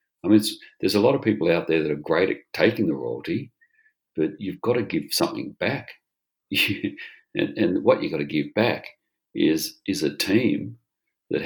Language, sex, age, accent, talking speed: English, male, 50-69, Australian, 195 wpm